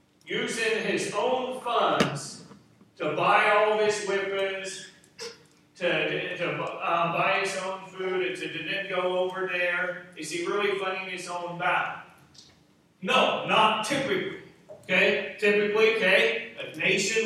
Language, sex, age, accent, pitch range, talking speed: English, male, 40-59, American, 175-210 Hz, 140 wpm